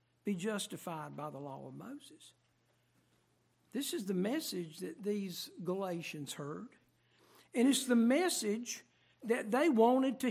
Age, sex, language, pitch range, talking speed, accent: 60-79, male, English, 185-255 Hz, 135 wpm, American